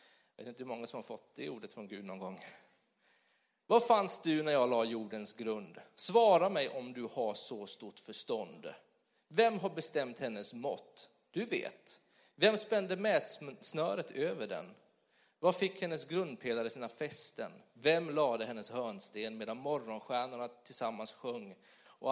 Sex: male